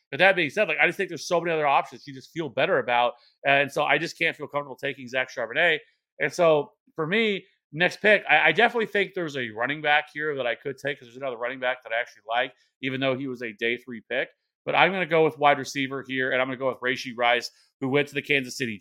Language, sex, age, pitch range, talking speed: English, male, 30-49, 130-145 Hz, 275 wpm